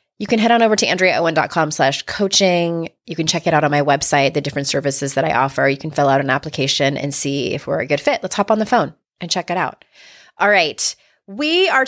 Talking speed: 250 wpm